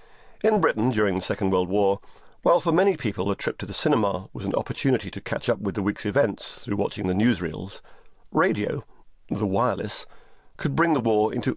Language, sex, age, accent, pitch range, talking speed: English, male, 40-59, British, 100-125 Hz, 195 wpm